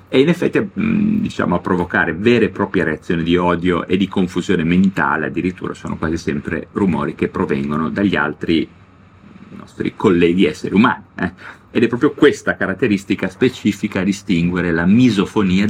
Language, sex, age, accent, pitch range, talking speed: Italian, male, 30-49, native, 90-115 Hz, 155 wpm